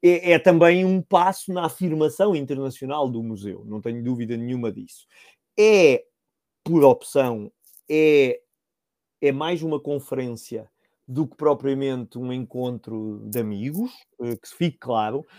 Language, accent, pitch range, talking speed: Portuguese, Brazilian, 130-195 Hz, 135 wpm